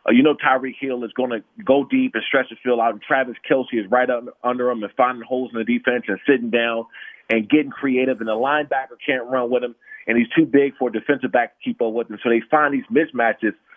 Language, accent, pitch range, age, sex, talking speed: English, American, 120-150 Hz, 30-49, male, 260 wpm